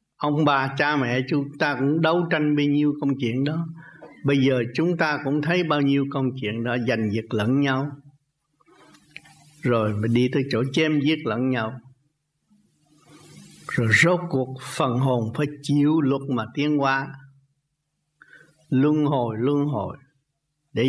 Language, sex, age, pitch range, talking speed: Vietnamese, male, 60-79, 130-155 Hz, 150 wpm